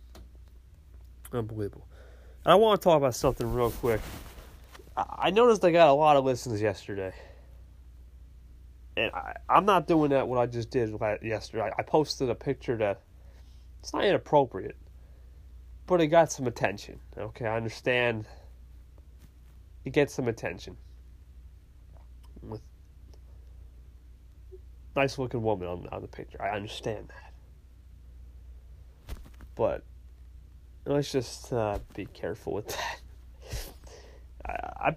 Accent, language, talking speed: American, English, 120 wpm